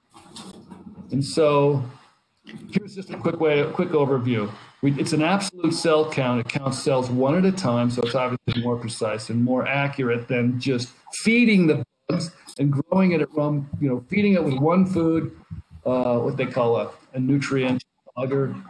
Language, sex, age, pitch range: English, male, 50-69, 130-180 Hz